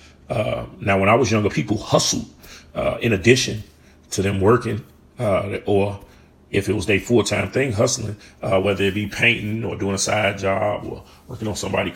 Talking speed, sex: 190 wpm, male